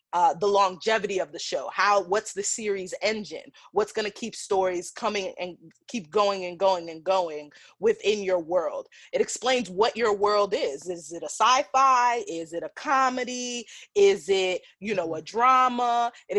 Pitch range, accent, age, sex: 180-240 Hz, American, 30-49, female